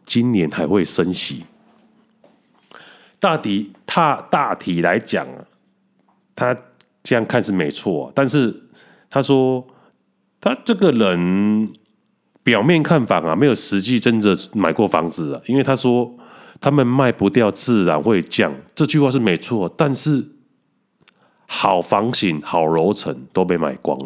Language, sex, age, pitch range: Chinese, male, 30-49, 100-145 Hz